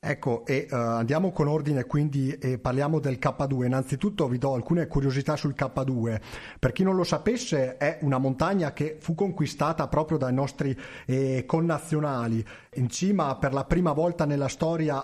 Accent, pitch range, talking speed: native, 130-160 Hz, 170 wpm